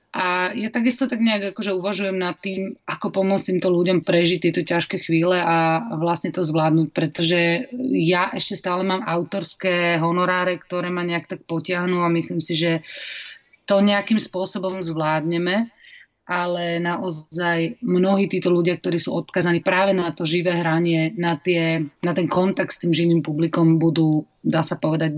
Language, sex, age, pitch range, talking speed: Slovak, female, 30-49, 160-185 Hz, 160 wpm